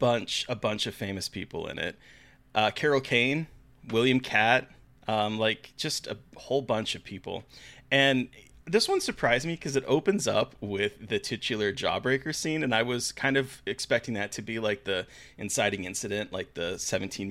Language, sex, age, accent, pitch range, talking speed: English, male, 30-49, American, 105-130 Hz, 175 wpm